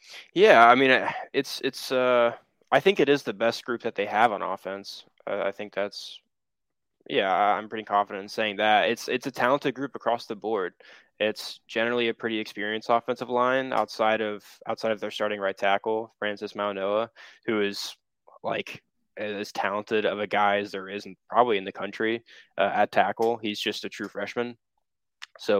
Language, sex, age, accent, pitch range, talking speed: English, male, 10-29, American, 100-110 Hz, 185 wpm